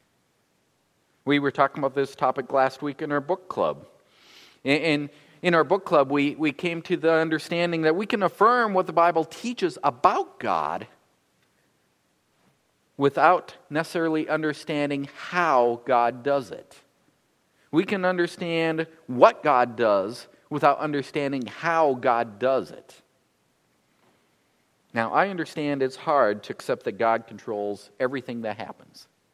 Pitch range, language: 125-160 Hz, English